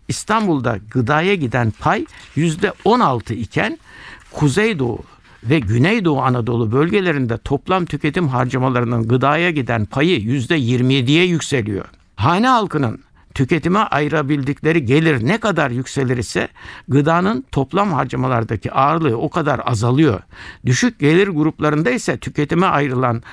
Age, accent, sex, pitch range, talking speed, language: 60-79, native, male, 125-170 Hz, 105 wpm, Turkish